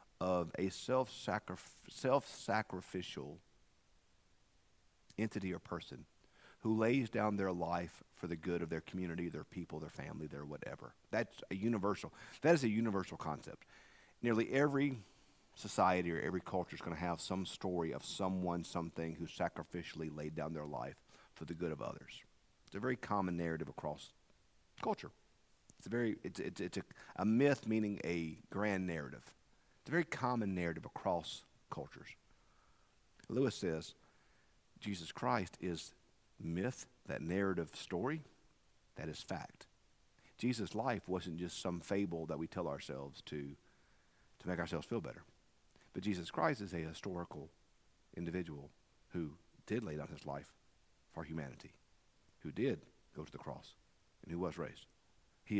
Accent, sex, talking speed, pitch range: American, male, 145 wpm, 80-100 Hz